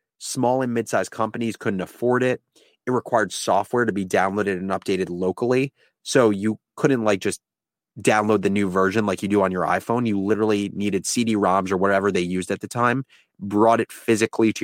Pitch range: 100-125 Hz